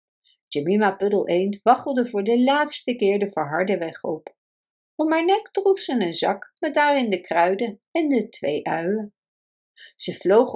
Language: Dutch